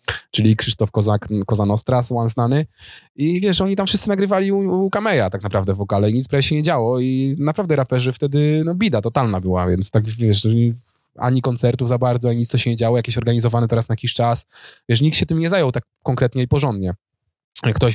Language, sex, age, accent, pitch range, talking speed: Polish, male, 20-39, native, 110-145 Hz, 205 wpm